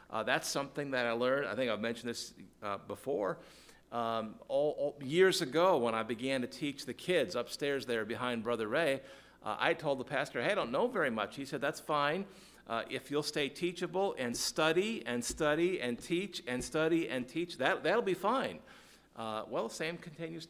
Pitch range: 115-150 Hz